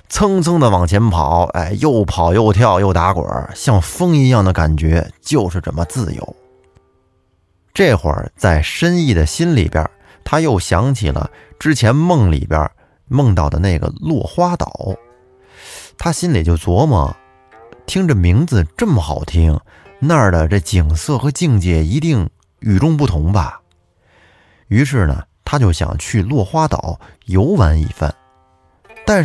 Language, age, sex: Chinese, 20-39, male